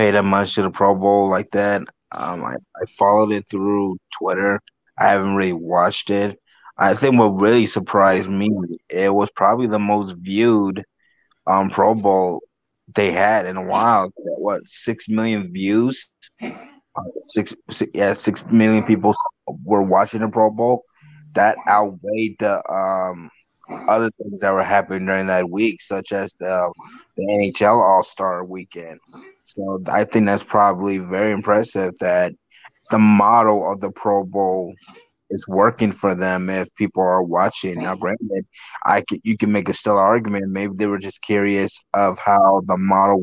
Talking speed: 160 wpm